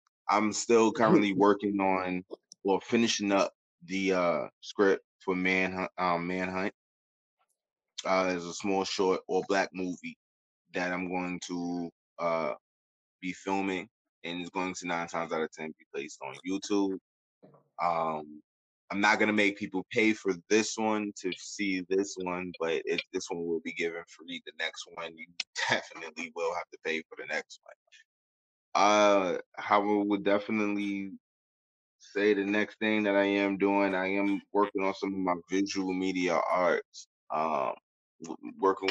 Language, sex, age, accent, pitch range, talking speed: English, male, 20-39, American, 90-100 Hz, 160 wpm